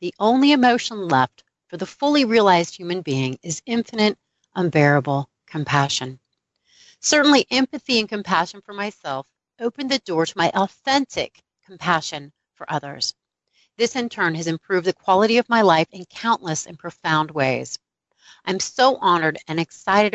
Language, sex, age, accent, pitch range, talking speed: English, female, 30-49, American, 155-220 Hz, 145 wpm